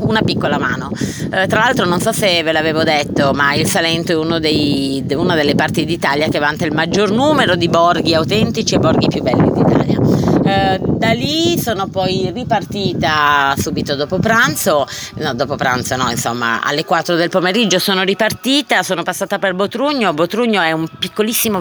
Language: Italian